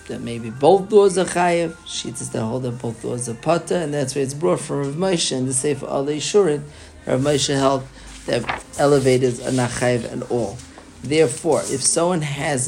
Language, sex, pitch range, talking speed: English, male, 130-160 Hz, 195 wpm